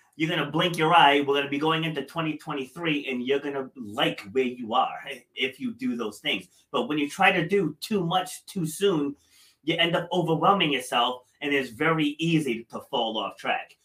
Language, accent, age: English, American, 30-49